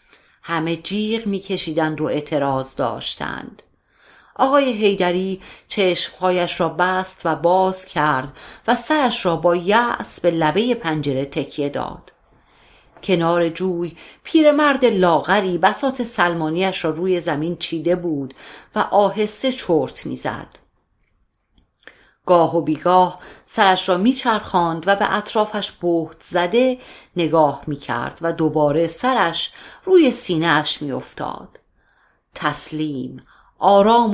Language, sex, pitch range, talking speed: Persian, female, 160-205 Hz, 105 wpm